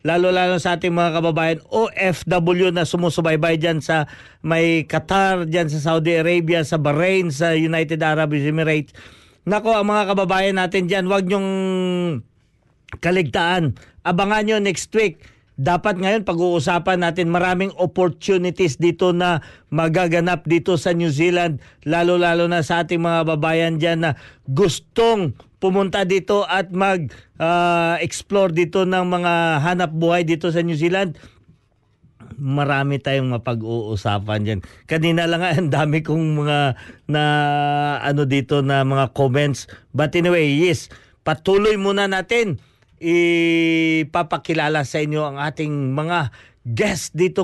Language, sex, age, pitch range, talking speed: Filipino, male, 40-59, 135-180 Hz, 125 wpm